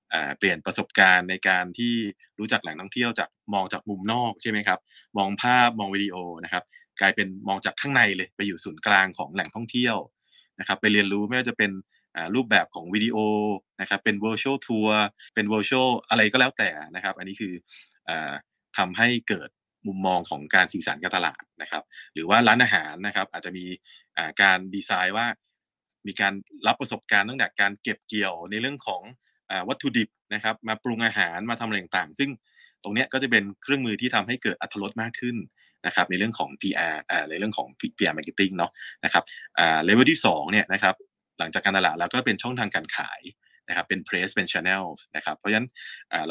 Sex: male